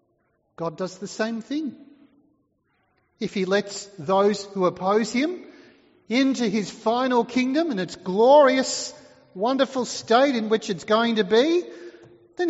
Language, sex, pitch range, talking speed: English, male, 165-235 Hz, 135 wpm